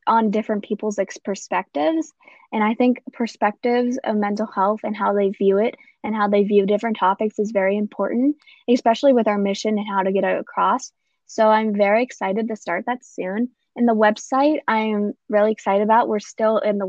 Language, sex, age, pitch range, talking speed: English, female, 10-29, 215-250 Hz, 195 wpm